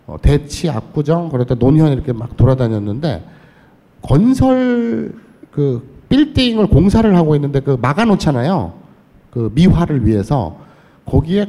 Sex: male